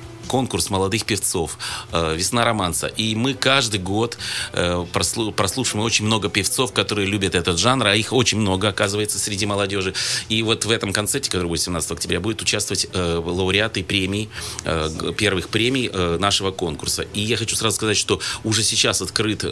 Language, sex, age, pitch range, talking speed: Russian, male, 30-49, 90-110 Hz, 155 wpm